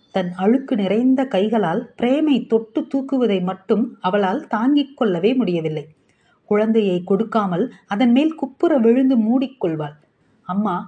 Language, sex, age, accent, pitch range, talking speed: Tamil, female, 30-49, native, 195-250 Hz, 105 wpm